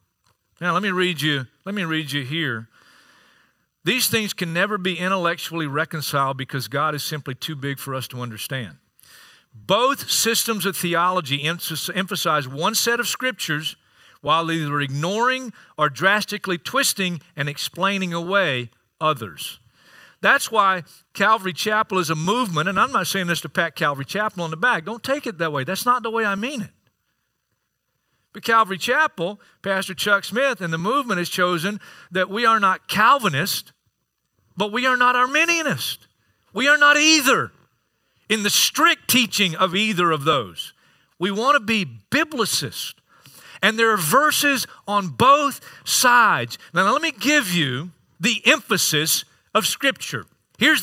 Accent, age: American, 50-69